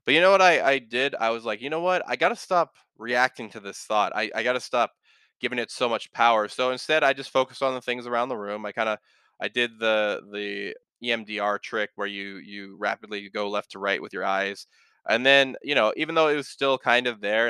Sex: male